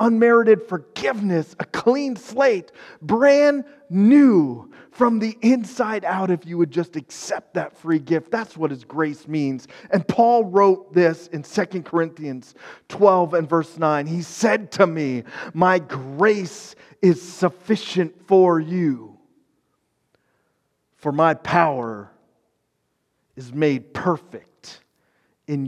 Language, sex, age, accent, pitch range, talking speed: English, male, 30-49, American, 140-210 Hz, 120 wpm